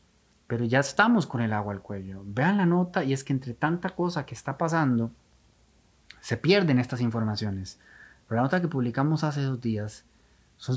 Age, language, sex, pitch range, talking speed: 30-49, Spanish, male, 105-150 Hz, 185 wpm